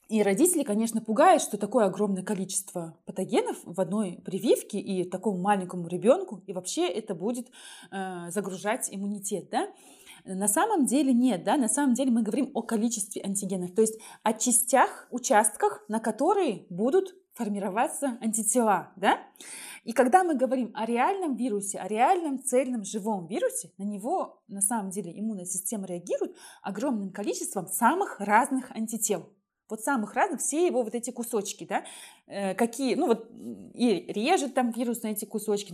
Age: 20-39